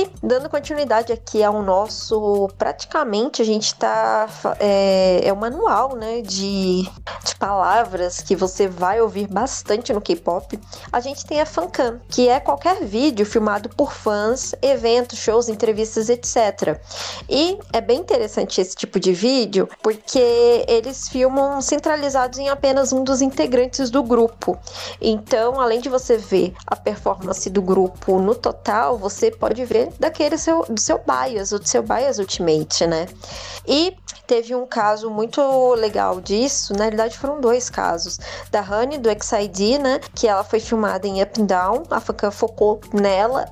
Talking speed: 155 wpm